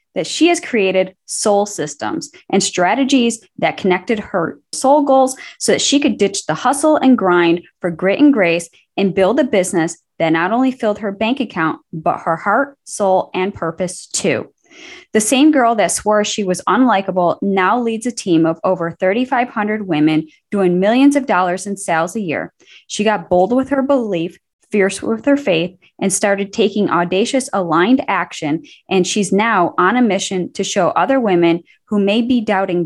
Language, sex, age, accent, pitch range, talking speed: English, female, 10-29, American, 180-240 Hz, 180 wpm